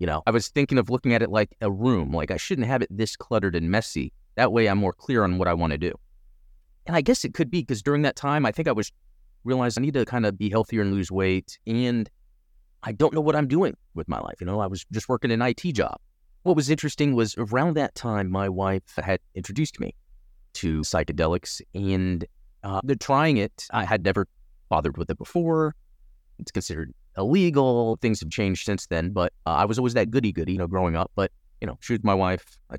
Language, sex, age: English, male, 30-49